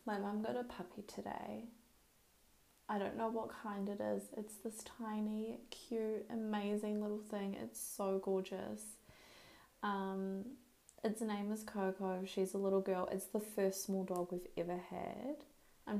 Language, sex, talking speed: English, female, 155 wpm